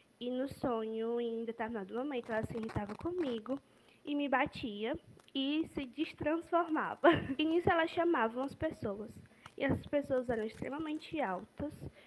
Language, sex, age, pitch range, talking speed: Portuguese, female, 10-29, 225-280 Hz, 140 wpm